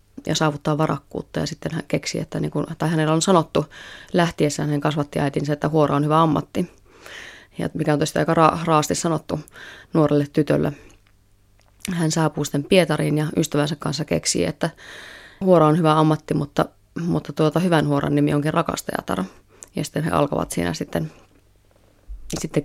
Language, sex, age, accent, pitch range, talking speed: Finnish, female, 20-39, native, 145-160 Hz, 160 wpm